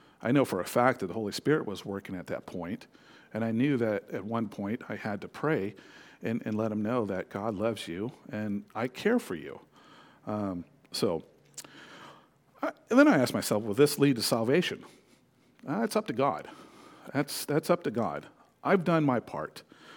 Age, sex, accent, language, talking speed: 50-69, male, American, English, 200 wpm